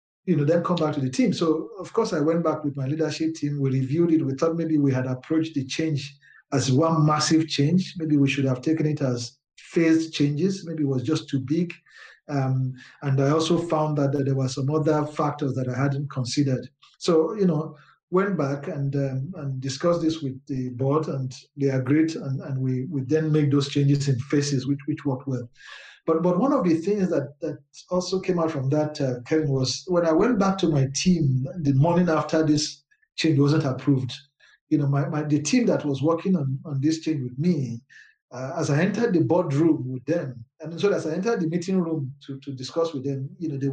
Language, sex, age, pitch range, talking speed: English, male, 50-69, 135-160 Hz, 225 wpm